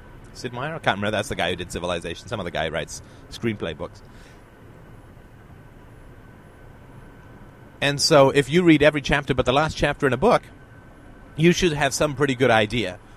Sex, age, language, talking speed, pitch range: male, 30-49, English, 180 wpm, 105-130 Hz